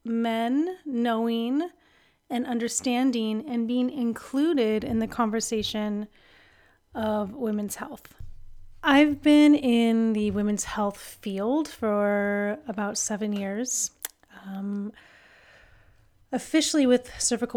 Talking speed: 95 wpm